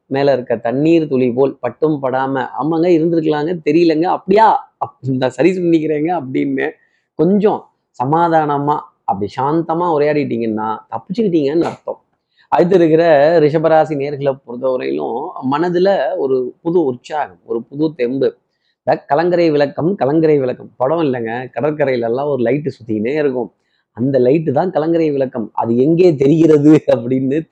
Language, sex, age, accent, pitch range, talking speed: Tamil, male, 30-49, native, 130-170 Hz, 120 wpm